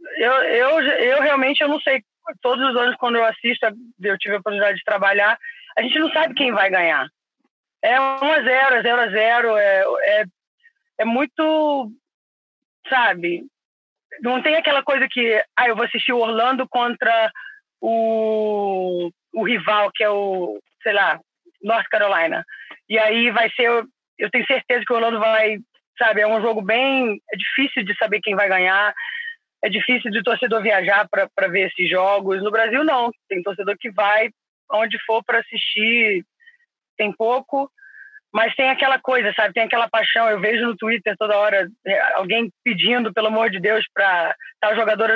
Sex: female